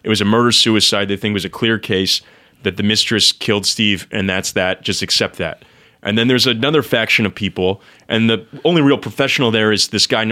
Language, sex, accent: English, male, American